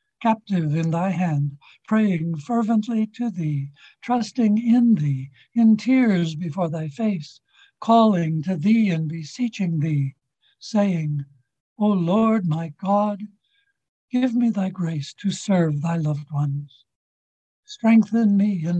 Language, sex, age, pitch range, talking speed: English, male, 60-79, 155-210 Hz, 125 wpm